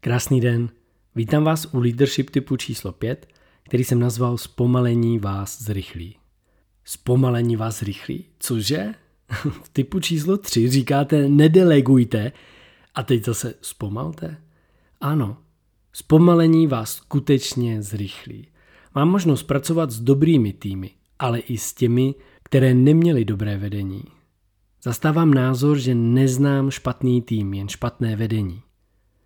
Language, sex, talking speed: Czech, male, 115 wpm